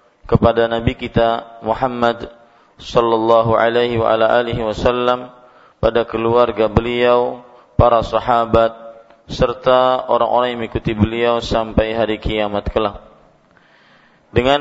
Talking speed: 105 wpm